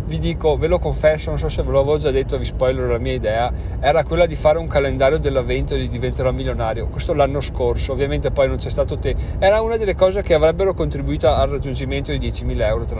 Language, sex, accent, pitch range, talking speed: Italian, male, native, 125-175 Hz, 230 wpm